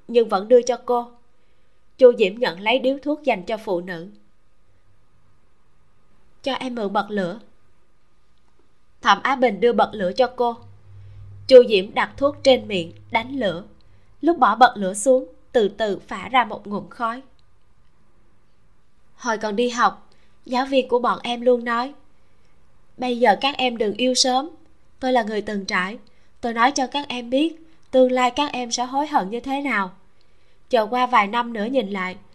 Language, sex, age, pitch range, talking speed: Vietnamese, female, 20-39, 195-260 Hz, 175 wpm